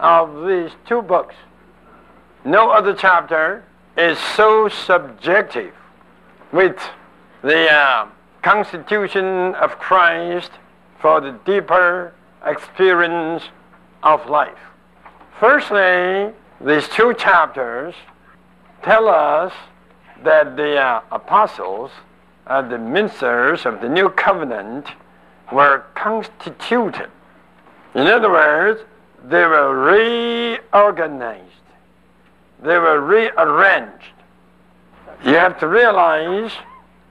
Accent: American